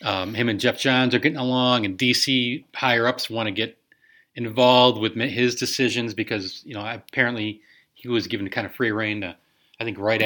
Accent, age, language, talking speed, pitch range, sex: American, 30-49, English, 200 wpm, 110-140 Hz, male